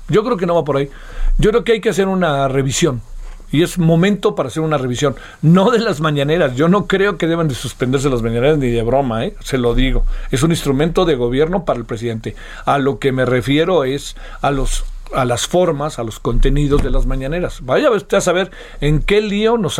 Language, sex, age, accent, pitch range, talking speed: Spanish, male, 50-69, Mexican, 135-205 Hz, 225 wpm